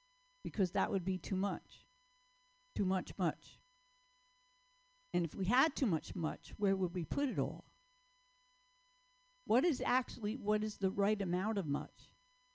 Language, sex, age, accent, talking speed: English, female, 60-79, American, 155 wpm